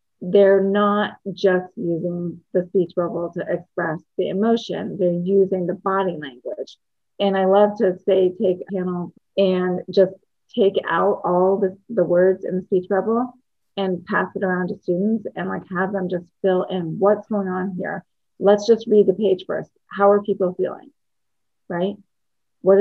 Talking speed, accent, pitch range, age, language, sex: 170 wpm, American, 180-200 Hz, 30-49, English, female